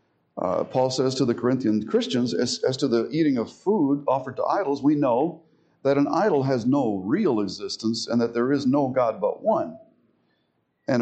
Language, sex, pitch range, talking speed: English, male, 115-165 Hz, 190 wpm